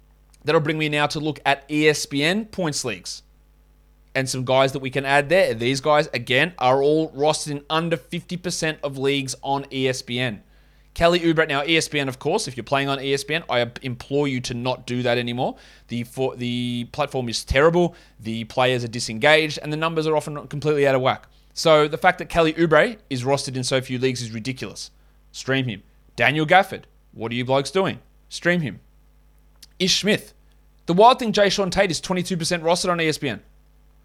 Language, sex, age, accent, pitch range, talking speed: English, male, 20-39, Australian, 125-165 Hz, 190 wpm